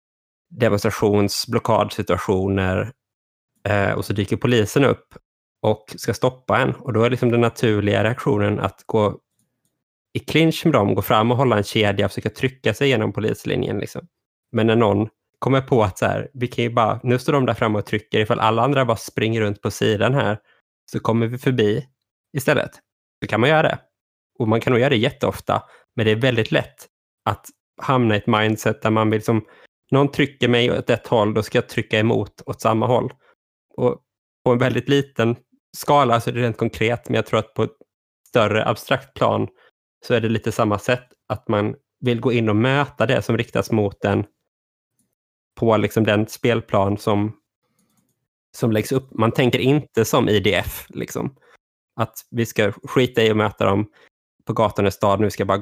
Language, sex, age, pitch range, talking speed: Swedish, male, 20-39, 105-125 Hz, 195 wpm